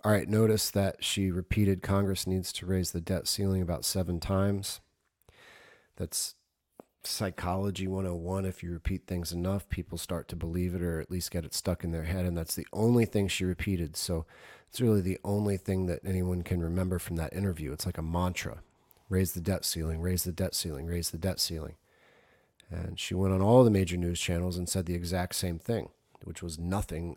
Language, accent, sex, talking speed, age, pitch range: English, American, male, 205 wpm, 40-59, 85-95 Hz